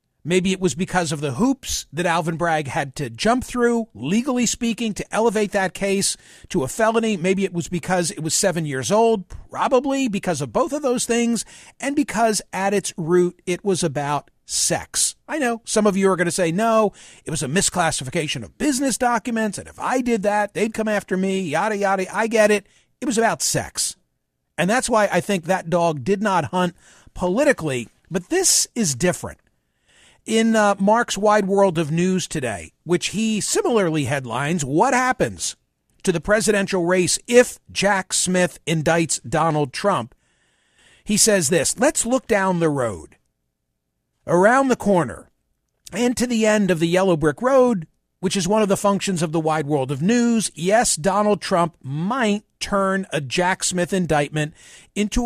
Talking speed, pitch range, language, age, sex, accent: 180 wpm, 165-220 Hz, English, 50-69, male, American